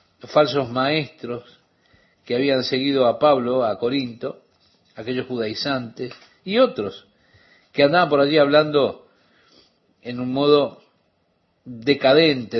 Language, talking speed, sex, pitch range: Spanish, 110 wpm, male, 115-150 Hz